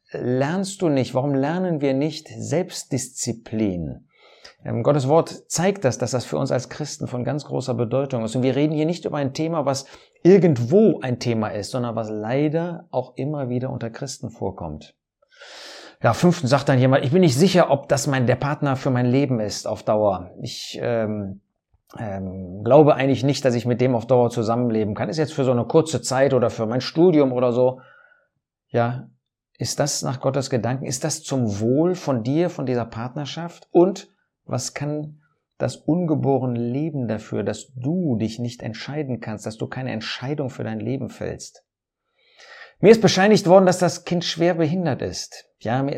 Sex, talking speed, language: male, 185 wpm, German